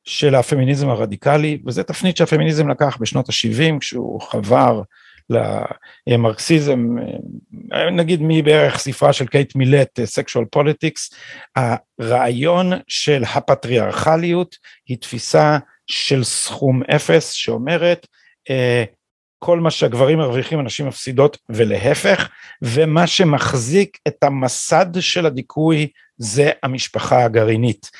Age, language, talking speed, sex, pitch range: 50-69, Hebrew, 95 wpm, male, 130-175 Hz